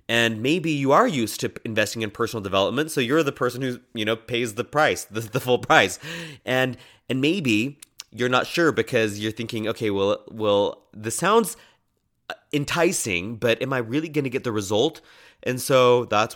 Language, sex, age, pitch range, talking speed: English, male, 30-49, 100-125 Hz, 185 wpm